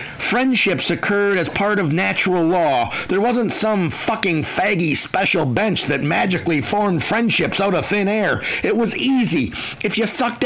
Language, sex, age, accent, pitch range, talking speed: English, male, 50-69, American, 160-220 Hz, 160 wpm